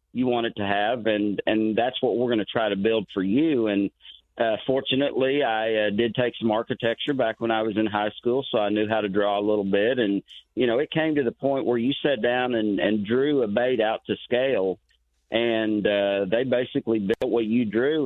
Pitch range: 100-115 Hz